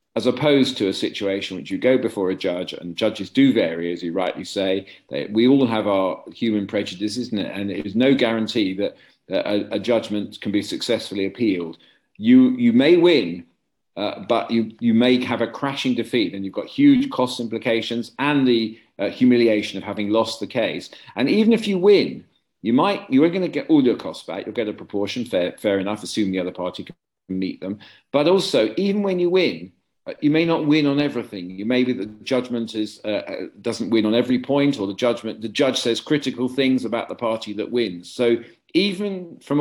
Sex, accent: male, British